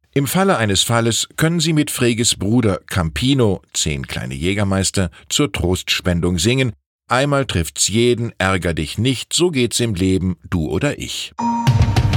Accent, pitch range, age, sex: German, 95-130 Hz, 50-69, male